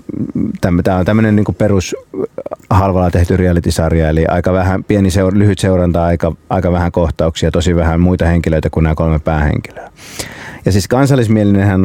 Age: 30-49